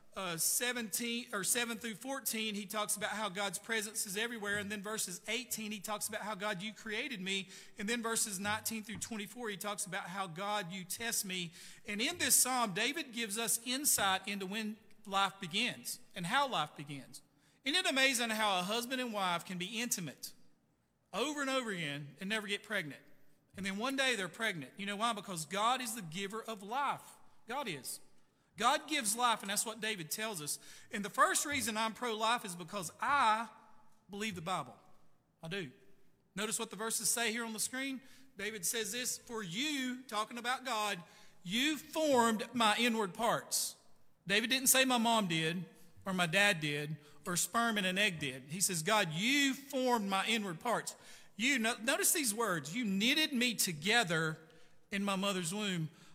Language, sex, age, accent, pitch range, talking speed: English, male, 40-59, American, 190-235 Hz, 185 wpm